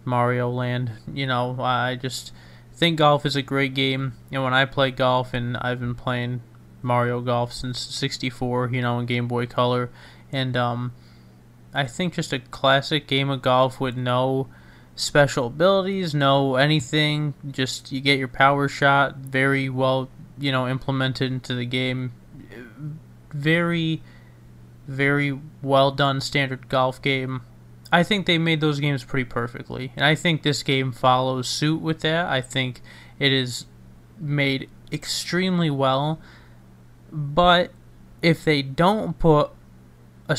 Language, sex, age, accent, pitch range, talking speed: English, male, 20-39, American, 125-150 Hz, 150 wpm